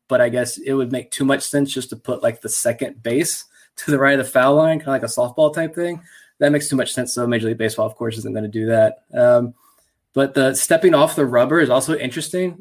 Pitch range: 120-145 Hz